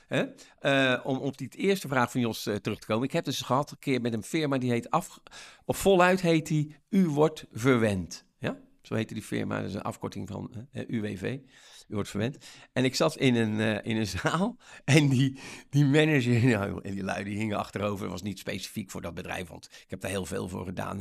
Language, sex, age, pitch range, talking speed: Dutch, male, 50-69, 105-145 Hz, 230 wpm